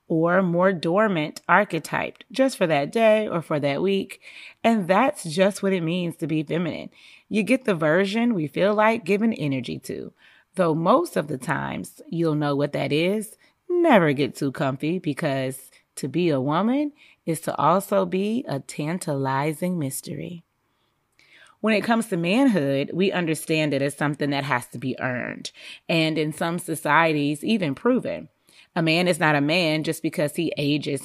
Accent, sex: American, female